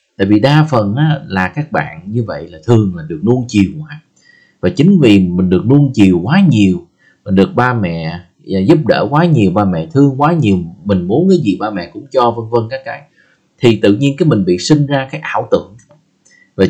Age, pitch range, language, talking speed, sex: 20-39, 100-155 Hz, Vietnamese, 220 wpm, male